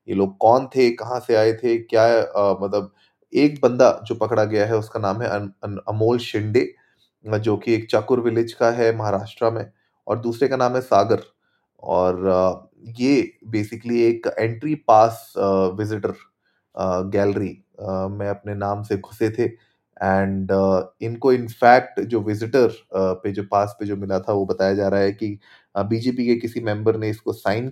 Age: 30-49